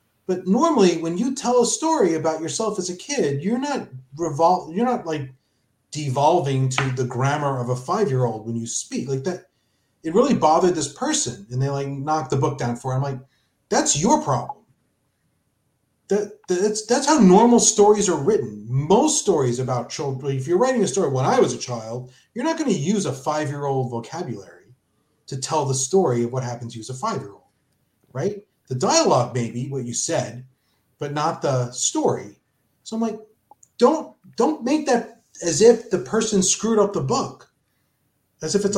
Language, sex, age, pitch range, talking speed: English, male, 40-59, 130-195 Hz, 185 wpm